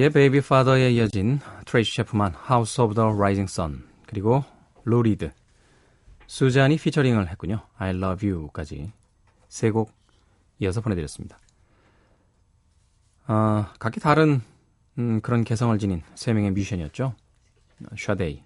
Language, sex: Korean, male